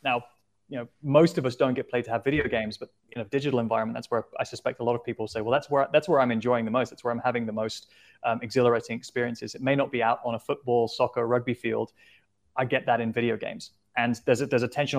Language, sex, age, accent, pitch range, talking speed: English, male, 20-39, British, 115-130 Hz, 270 wpm